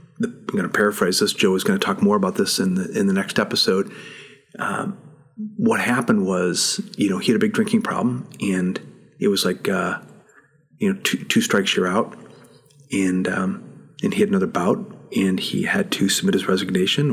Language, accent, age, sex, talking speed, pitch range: English, American, 40-59, male, 200 wpm, 135-210 Hz